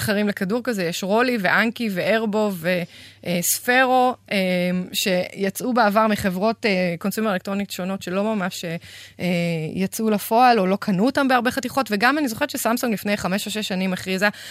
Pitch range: 180-220 Hz